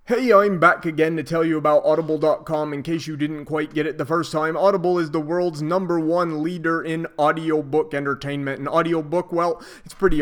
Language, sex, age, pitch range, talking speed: English, male, 30-49, 145-170 Hz, 200 wpm